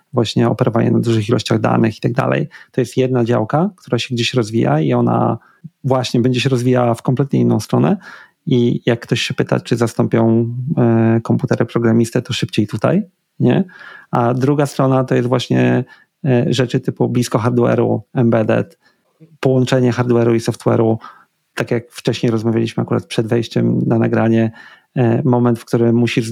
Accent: native